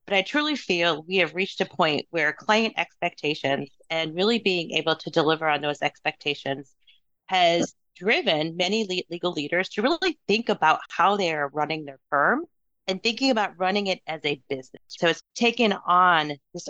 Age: 30-49